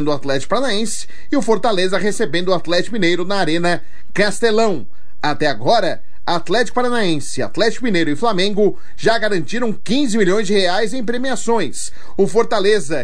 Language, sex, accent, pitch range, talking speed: Portuguese, male, Brazilian, 175-225 Hz, 145 wpm